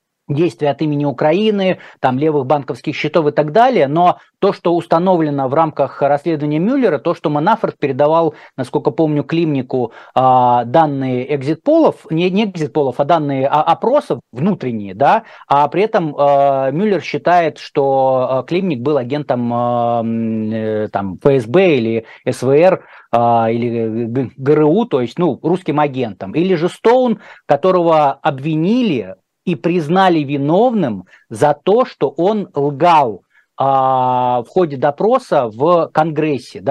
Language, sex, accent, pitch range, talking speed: Russian, male, native, 135-175 Hz, 125 wpm